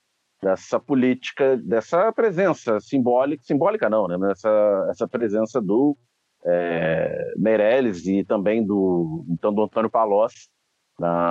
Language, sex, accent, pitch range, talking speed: Portuguese, male, Brazilian, 90-125 Hz, 110 wpm